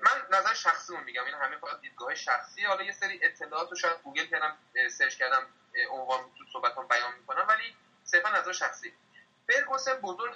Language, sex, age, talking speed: Persian, male, 30-49, 175 wpm